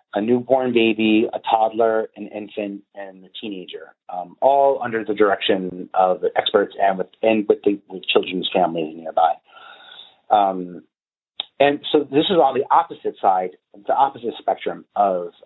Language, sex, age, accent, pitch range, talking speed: English, male, 30-49, American, 100-140 Hz, 155 wpm